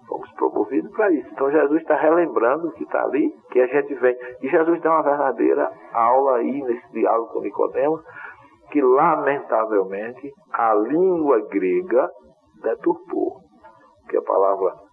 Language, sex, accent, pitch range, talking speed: Portuguese, male, Brazilian, 330-410 Hz, 140 wpm